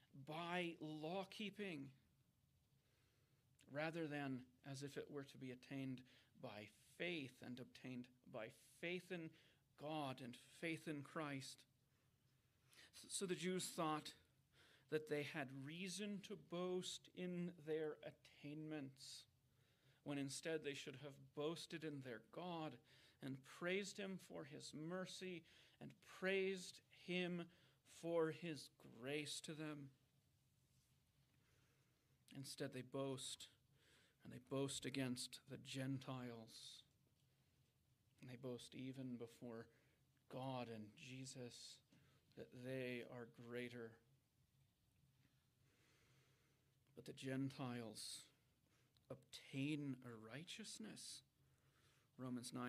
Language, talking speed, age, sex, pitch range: English, 100 wpm, 40-59, male, 125-150 Hz